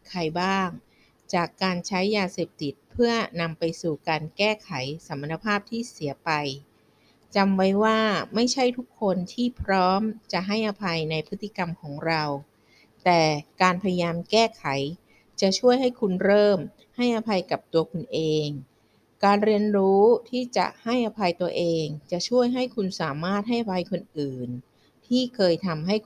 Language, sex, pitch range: Thai, female, 160-210 Hz